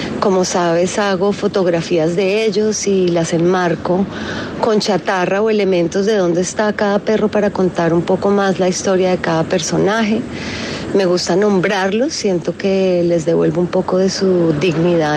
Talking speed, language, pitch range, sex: 160 wpm, Spanish, 180-210 Hz, female